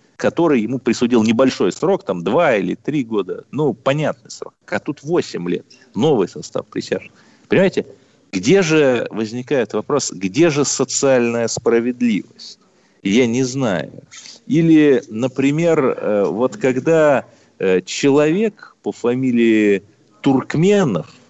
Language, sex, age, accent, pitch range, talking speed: Russian, male, 40-59, native, 110-155 Hz, 115 wpm